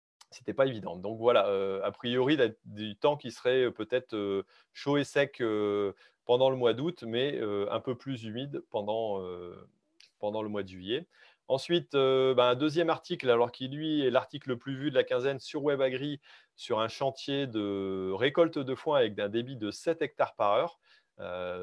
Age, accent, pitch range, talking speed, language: 30-49, French, 105-140 Hz, 200 wpm, French